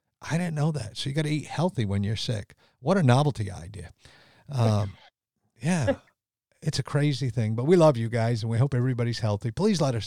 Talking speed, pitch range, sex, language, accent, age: 215 wpm, 110-130 Hz, male, English, American, 50-69